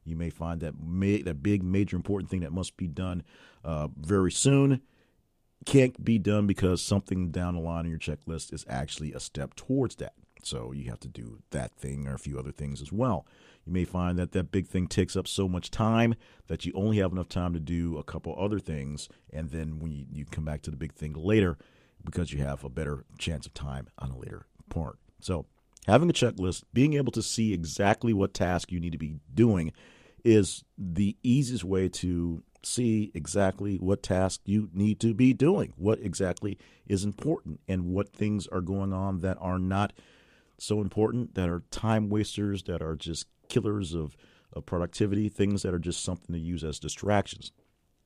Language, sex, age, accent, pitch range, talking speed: English, male, 40-59, American, 85-105 Hz, 200 wpm